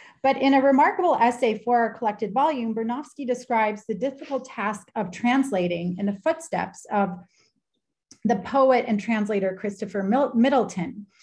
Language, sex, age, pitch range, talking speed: English, female, 30-49, 190-245 Hz, 140 wpm